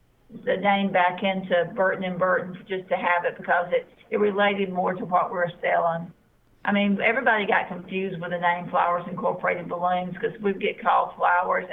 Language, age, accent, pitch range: English, 50-69, American, 180-205 Hz